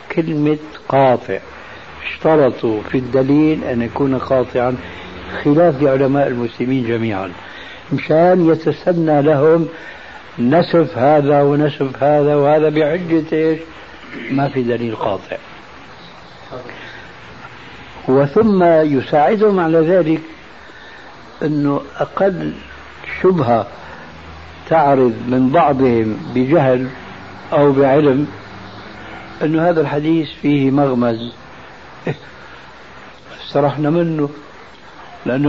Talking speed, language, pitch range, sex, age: 80 wpm, Arabic, 125-155 Hz, male, 60-79